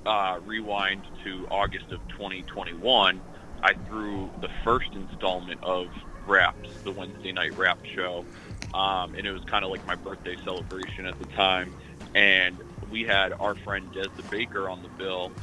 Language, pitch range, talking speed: English, 90-100 Hz, 160 wpm